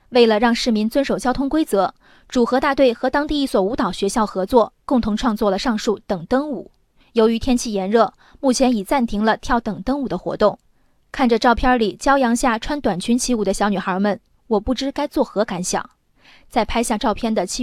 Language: Chinese